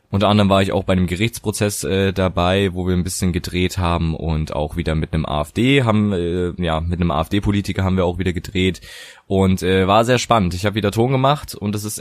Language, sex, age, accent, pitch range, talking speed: German, male, 20-39, German, 90-110 Hz, 230 wpm